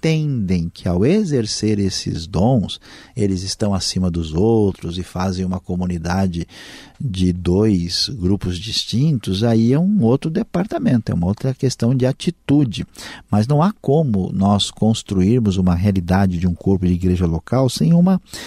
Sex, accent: male, Brazilian